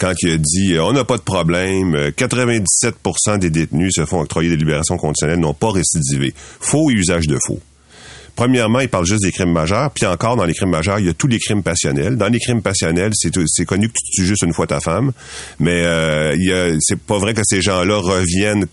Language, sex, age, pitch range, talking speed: French, male, 40-59, 85-120 Hz, 230 wpm